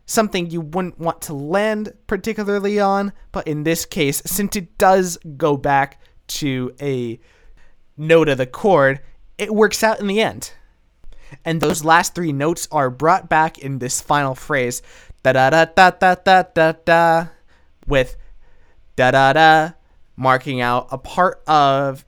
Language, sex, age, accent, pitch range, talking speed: English, male, 20-39, American, 130-170 Hz, 160 wpm